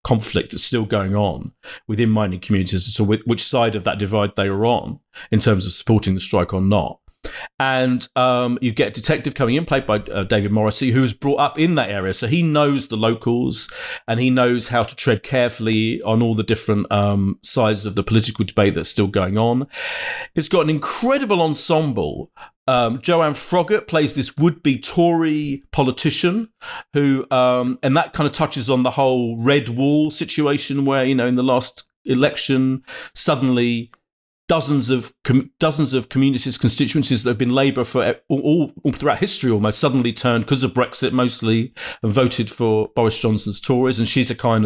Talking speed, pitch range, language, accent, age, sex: 190 wpm, 115-145 Hz, English, British, 40-59, male